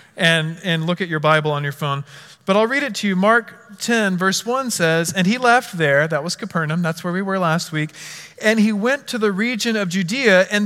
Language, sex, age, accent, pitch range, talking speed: English, male, 40-59, American, 155-200 Hz, 235 wpm